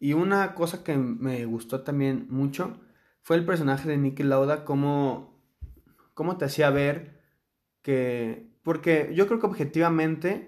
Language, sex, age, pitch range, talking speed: Spanish, male, 20-39, 130-155 Hz, 145 wpm